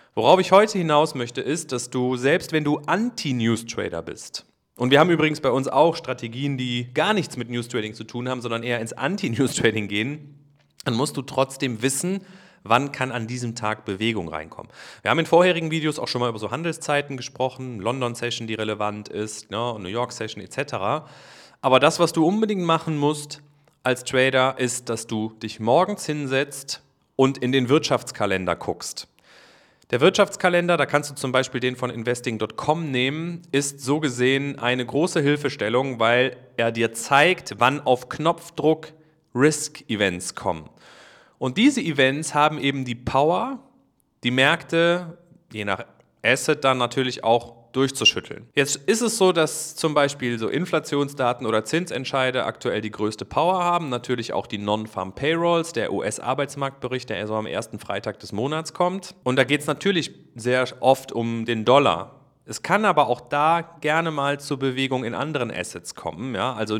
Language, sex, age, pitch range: German, male, 30-49, 120-155 Hz